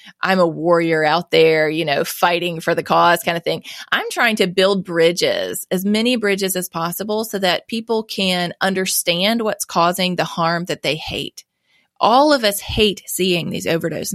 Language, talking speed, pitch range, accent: English, 180 wpm, 170-210 Hz, American